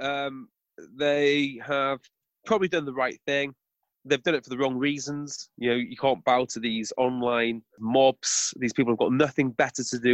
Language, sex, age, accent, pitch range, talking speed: English, male, 30-49, British, 130-175 Hz, 190 wpm